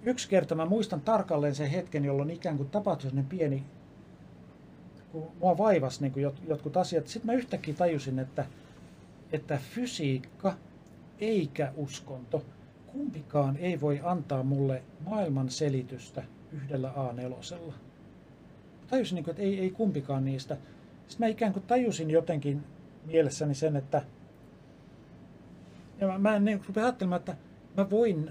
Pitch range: 140-185 Hz